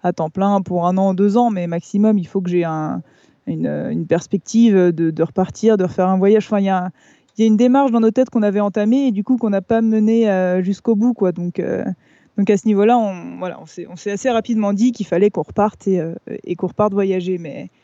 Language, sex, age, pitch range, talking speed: French, female, 20-39, 180-215 Hz, 245 wpm